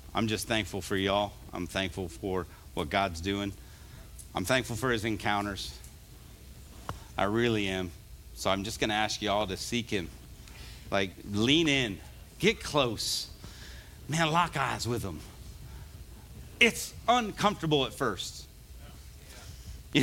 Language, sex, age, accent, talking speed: English, male, 50-69, American, 130 wpm